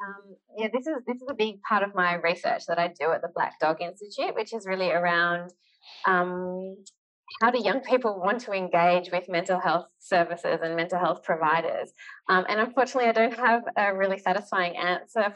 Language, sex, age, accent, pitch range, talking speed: English, female, 20-39, Australian, 175-210 Hz, 195 wpm